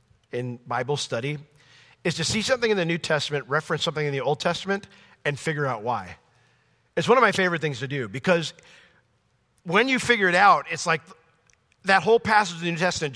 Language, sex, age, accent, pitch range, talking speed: English, male, 40-59, American, 140-180 Hz, 200 wpm